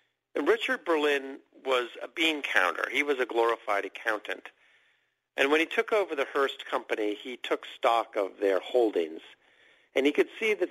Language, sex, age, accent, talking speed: English, male, 50-69, American, 175 wpm